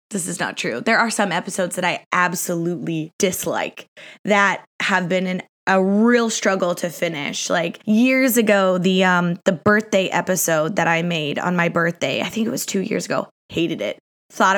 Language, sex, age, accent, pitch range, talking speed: English, female, 20-39, American, 180-230 Hz, 185 wpm